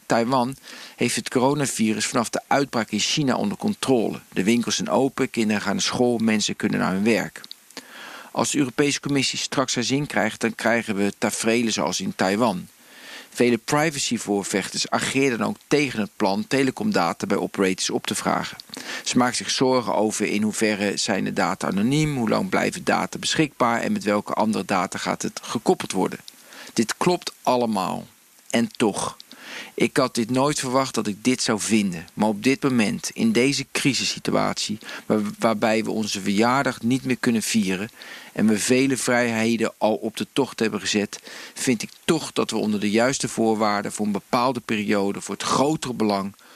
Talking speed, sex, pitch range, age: 175 wpm, male, 105-130 Hz, 50-69